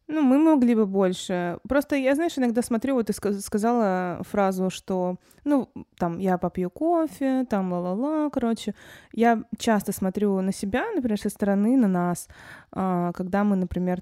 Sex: female